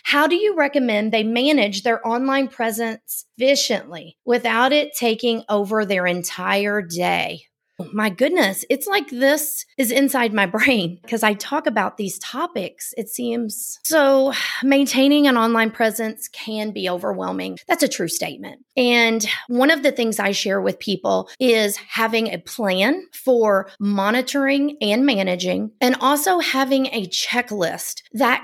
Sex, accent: female, American